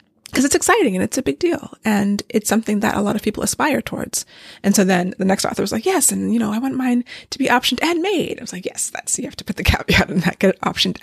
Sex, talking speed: female, 285 wpm